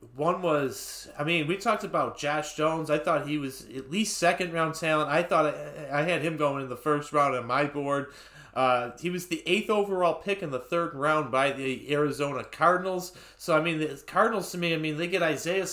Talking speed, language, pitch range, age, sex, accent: 220 wpm, English, 145-175 Hz, 30-49, male, American